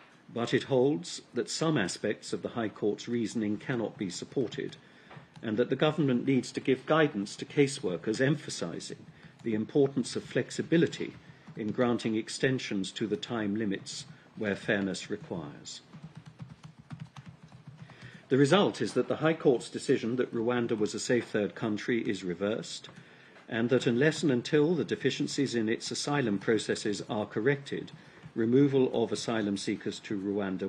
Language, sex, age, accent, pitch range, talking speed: English, male, 50-69, British, 105-140 Hz, 145 wpm